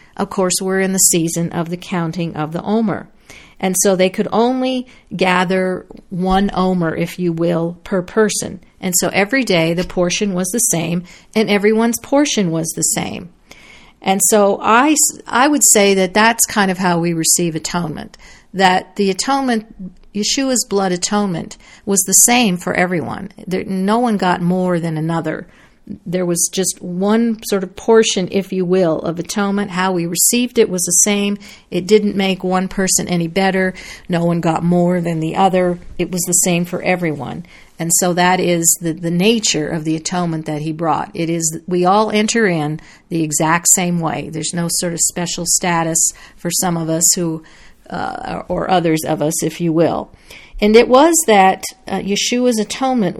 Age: 50-69